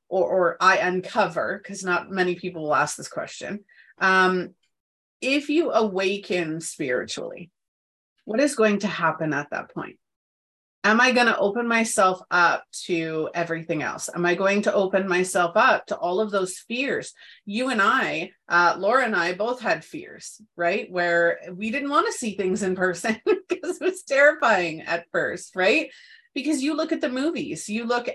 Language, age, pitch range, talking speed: English, 30-49, 175-225 Hz, 175 wpm